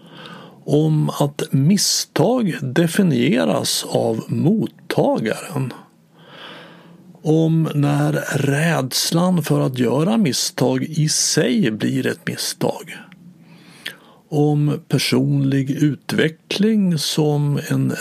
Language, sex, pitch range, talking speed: Swedish, male, 145-185 Hz, 75 wpm